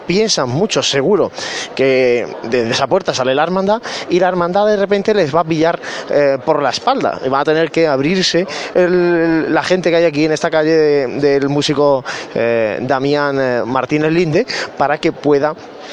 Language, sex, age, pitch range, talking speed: Spanish, male, 20-39, 130-165 Hz, 175 wpm